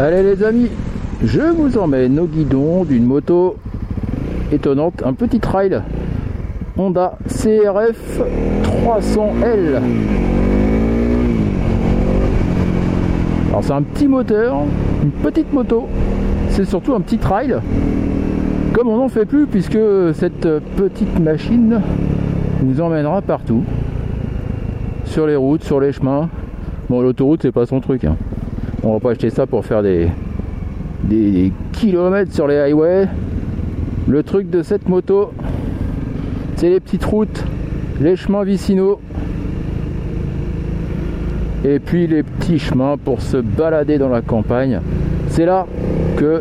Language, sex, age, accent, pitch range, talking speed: French, male, 50-69, French, 120-195 Hz, 125 wpm